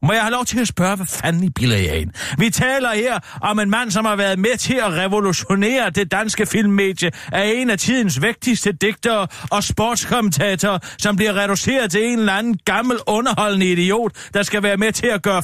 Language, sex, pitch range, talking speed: Danish, male, 190-230 Hz, 200 wpm